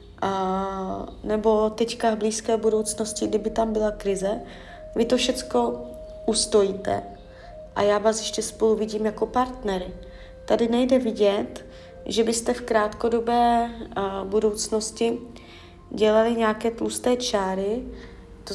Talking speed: 110 wpm